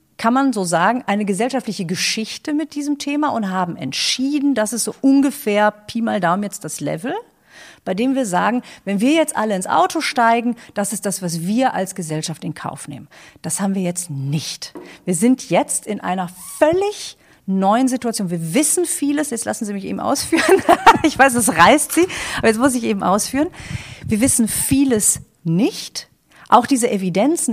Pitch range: 185-270 Hz